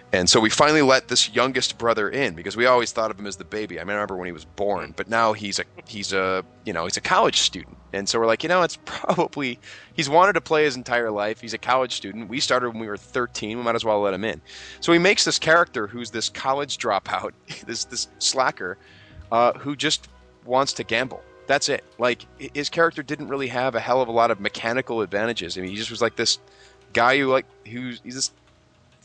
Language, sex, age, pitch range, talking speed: English, male, 30-49, 105-140 Hz, 240 wpm